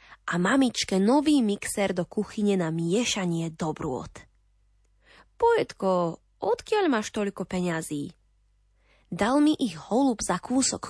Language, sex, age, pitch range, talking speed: Slovak, female, 20-39, 165-245 Hz, 110 wpm